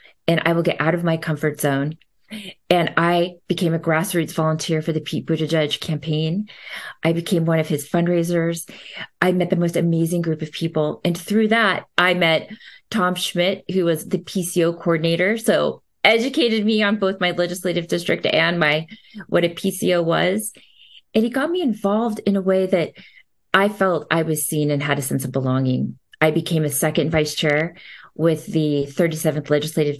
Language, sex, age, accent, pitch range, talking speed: English, female, 30-49, American, 150-180 Hz, 180 wpm